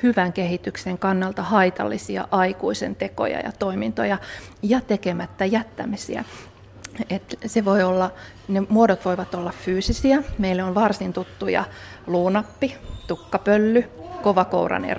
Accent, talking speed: native, 105 wpm